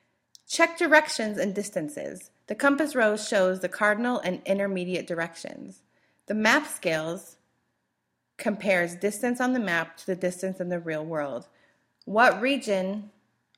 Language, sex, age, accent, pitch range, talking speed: English, female, 30-49, American, 180-235 Hz, 135 wpm